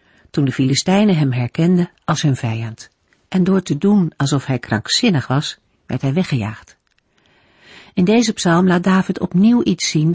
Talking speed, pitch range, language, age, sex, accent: 160 wpm, 140-200 Hz, Dutch, 50-69, female, Dutch